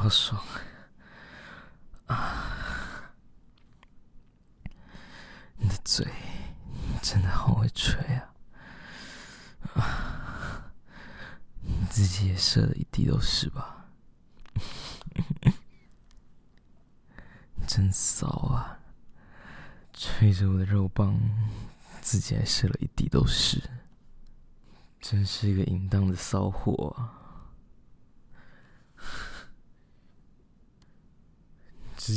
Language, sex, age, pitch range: Chinese, male, 20-39, 90-105 Hz